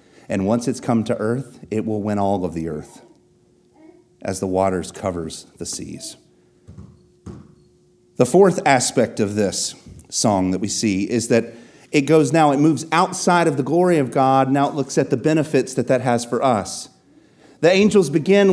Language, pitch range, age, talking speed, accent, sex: English, 110-170 Hz, 40-59, 180 wpm, American, male